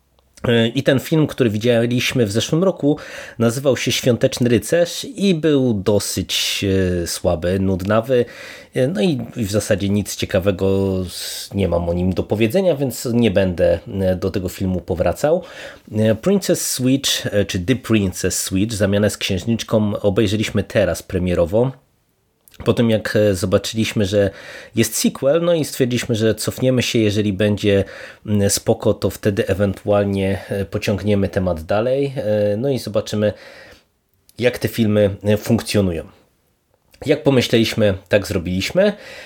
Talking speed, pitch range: 125 wpm, 100-120 Hz